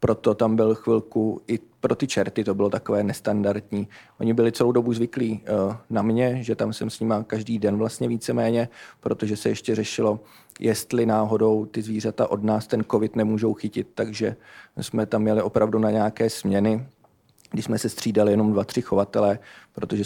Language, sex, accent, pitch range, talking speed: Czech, male, native, 105-115 Hz, 175 wpm